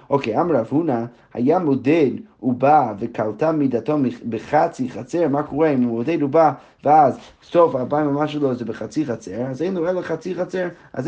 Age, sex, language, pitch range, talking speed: 30-49, male, Hebrew, 125-170 Hz, 180 wpm